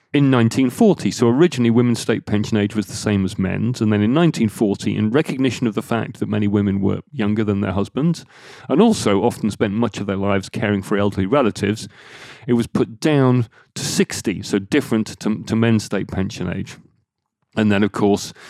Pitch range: 100-130 Hz